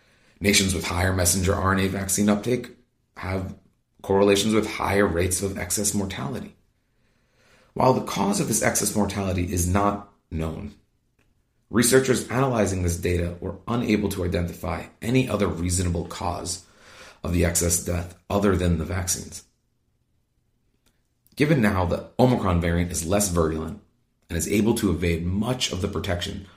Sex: male